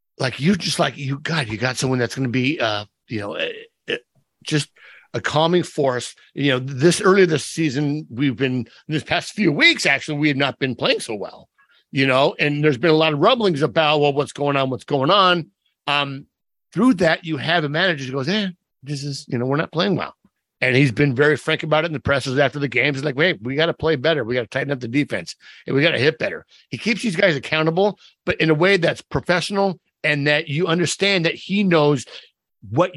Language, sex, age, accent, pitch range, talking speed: English, male, 50-69, American, 140-175 Hz, 240 wpm